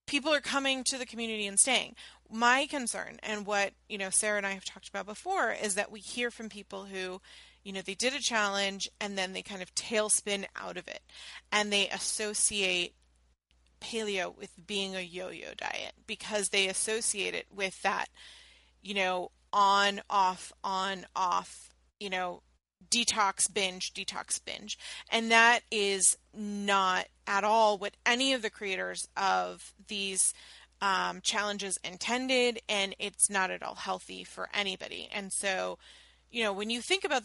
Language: English